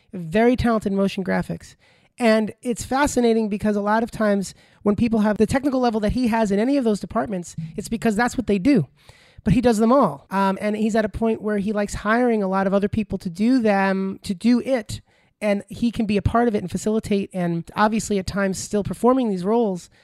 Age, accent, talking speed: 30-49, American, 230 wpm